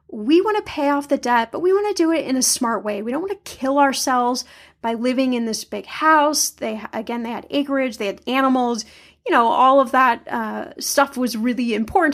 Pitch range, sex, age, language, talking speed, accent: 235-290 Hz, female, 10-29, English, 230 wpm, American